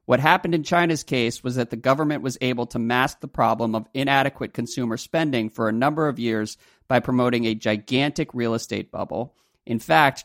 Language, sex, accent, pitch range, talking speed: English, male, American, 115-145 Hz, 195 wpm